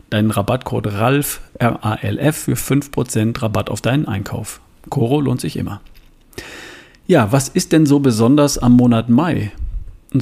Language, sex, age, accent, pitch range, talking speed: German, male, 40-59, German, 110-145 Hz, 135 wpm